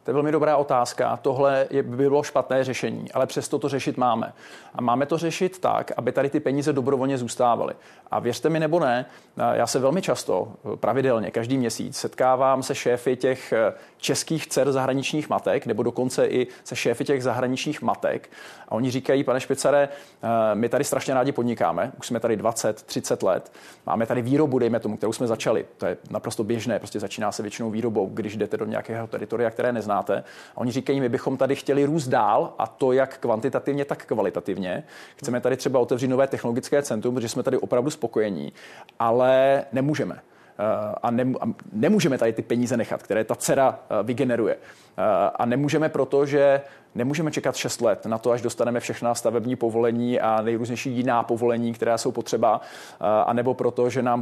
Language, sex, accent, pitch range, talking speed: Czech, male, native, 120-140 Hz, 175 wpm